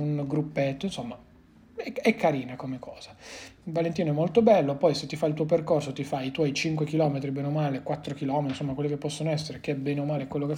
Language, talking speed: Italian, 240 wpm